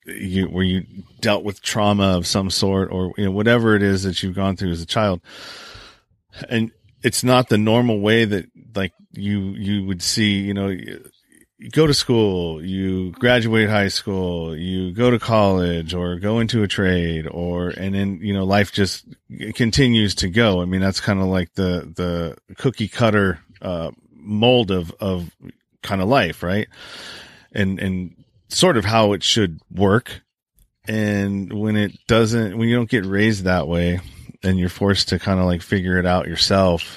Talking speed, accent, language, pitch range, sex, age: 180 wpm, American, English, 90-110 Hz, male, 40-59